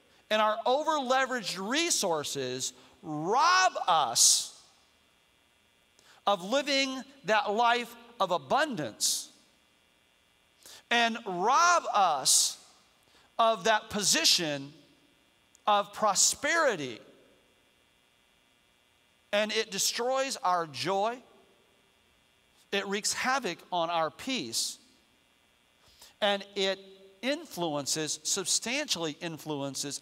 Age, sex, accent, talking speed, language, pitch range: 50-69, male, American, 70 wpm, English, 155-235 Hz